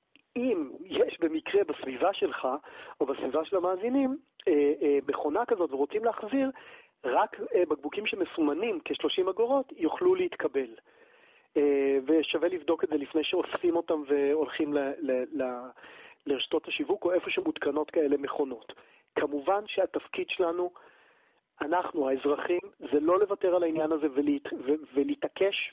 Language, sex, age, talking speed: Hebrew, male, 40-59, 130 wpm